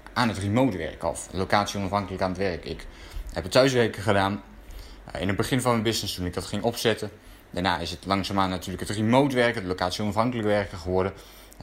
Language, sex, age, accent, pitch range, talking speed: Dutch, male, 20-39, Dutch, 95-115 Hz, 205 wpm